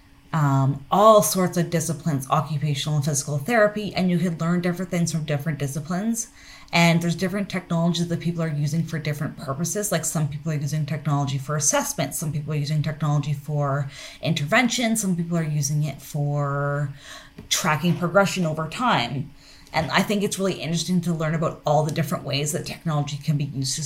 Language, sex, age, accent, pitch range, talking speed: English, female, 20-39, American, 145-170 Hz, 185 wpm